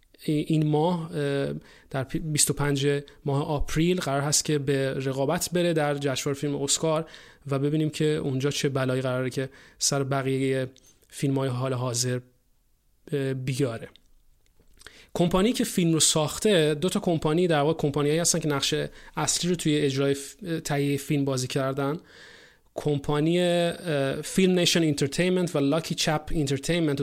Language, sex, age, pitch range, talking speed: Persian, male, 30-49, 140-165 Hz, 135 wpm